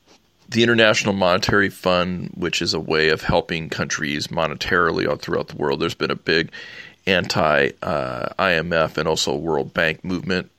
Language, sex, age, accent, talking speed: English, male, 40-59, American, 155 wpm